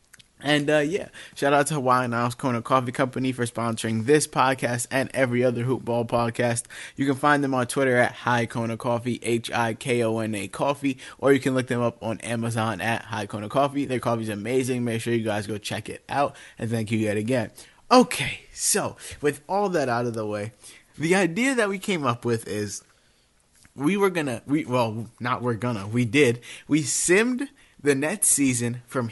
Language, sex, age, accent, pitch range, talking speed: English, male, 20-39, American, 120-155 Hz, 195 wpm